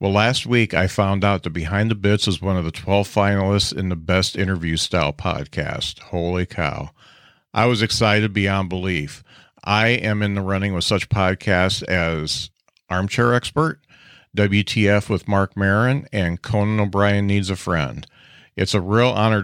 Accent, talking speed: American, 165 wpm